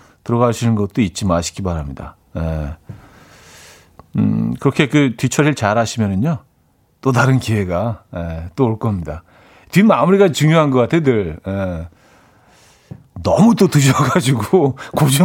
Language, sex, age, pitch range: Korean, male, 40-59, 100-145 Hz